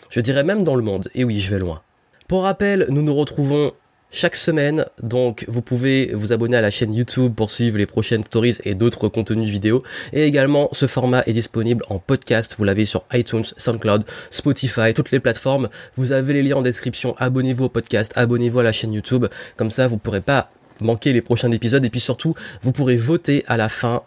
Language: French